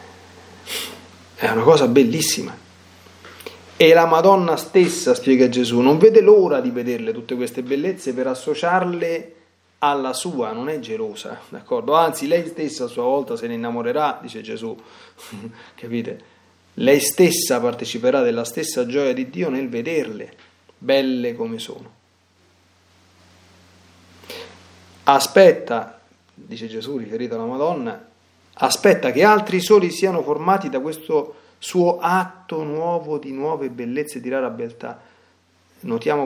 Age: 30-49